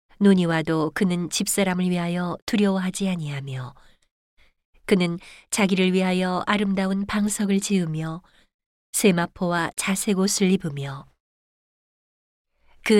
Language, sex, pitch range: Korean, female, 170-200 Hz